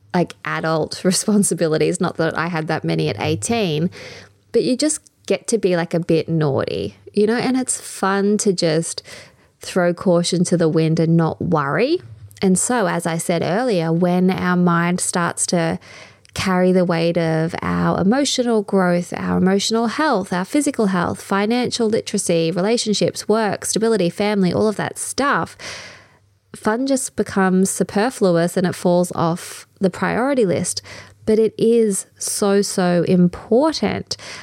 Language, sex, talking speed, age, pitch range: English, female, 150 wpm, 20-39, 170-215 Hz